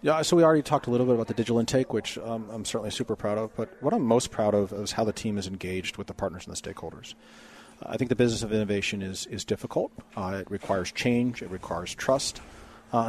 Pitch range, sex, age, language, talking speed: 100-125 Hz, male, 40-59, English, 250 wpm